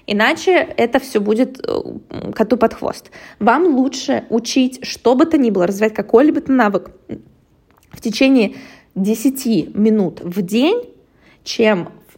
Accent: native